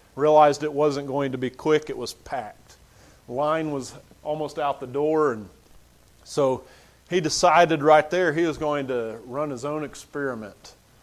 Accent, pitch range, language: American, 120-155 Hz, English